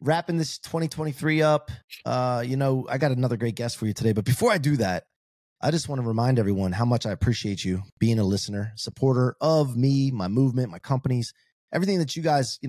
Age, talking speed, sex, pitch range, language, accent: 30-49, 220 wpm, male, 105-135 Hz, English, American